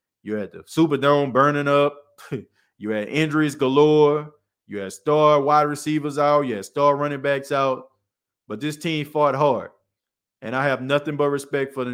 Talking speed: 175 wpm